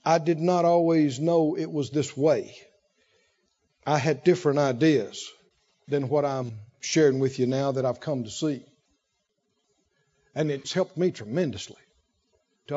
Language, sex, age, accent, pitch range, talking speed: English, male, 60-79, American, 145-190 Hz, 145 wpm